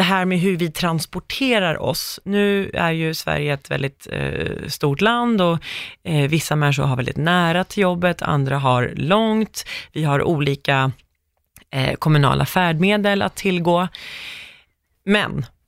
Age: 30-49